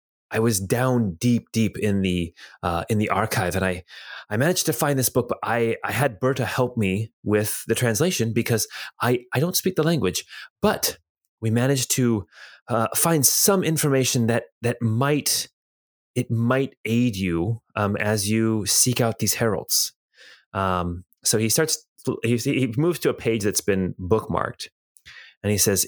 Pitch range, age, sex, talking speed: 100-130 Hz, 30-49, male, 170 wpm